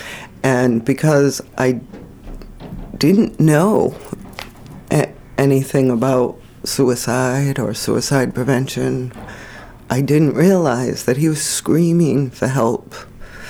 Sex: female